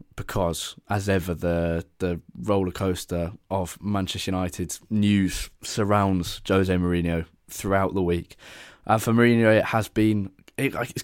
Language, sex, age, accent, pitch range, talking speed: English, male, 10-29, British, 90-105 Hz, 130 wpm